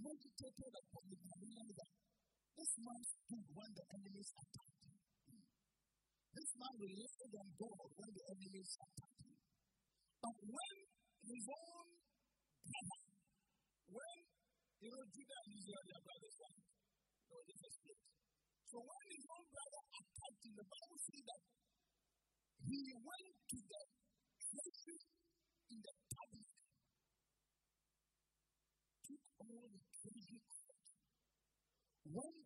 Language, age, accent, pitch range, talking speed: English, 50-69, American, 195-275 Hz, 110 wpm